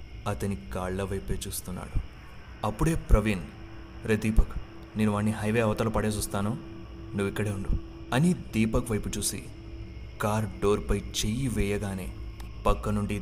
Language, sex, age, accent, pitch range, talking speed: Telugu, male, 20-39, native, 100-110 Hz, 125 wpm